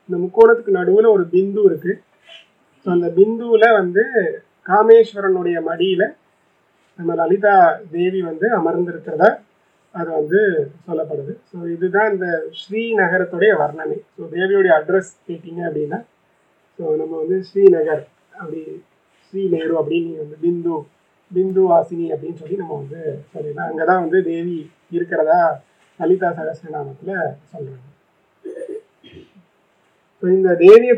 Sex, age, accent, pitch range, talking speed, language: male, 30-49, native, 160-200 Hz, 110 wpm, Tamil